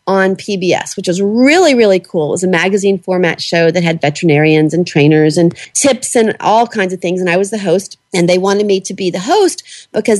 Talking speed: 230 wpm